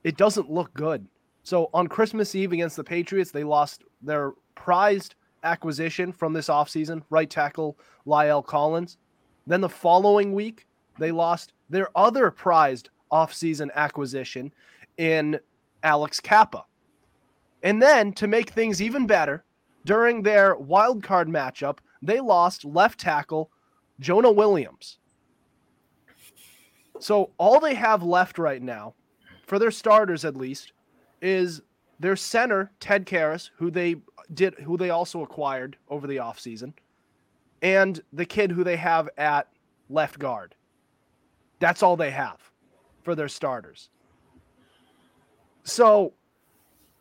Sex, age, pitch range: male, 20-39, 155-200 Hz